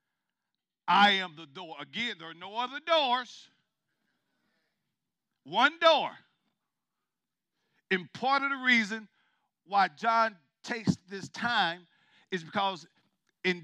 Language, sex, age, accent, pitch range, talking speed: English, male, 50-69, American, 190-245 Hz, 110 wpm